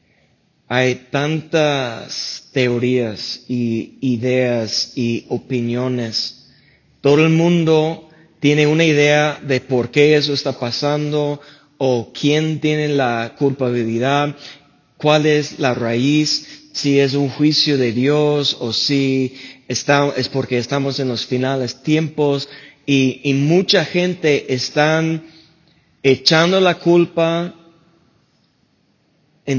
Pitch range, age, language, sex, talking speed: 130-160 Hz, 30-49, Spanish, male, 110 wpm